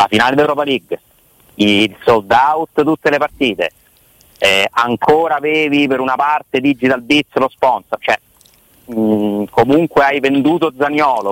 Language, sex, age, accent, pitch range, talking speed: Italian, male, 40-59, native, 110-155 Hz, 140 wpm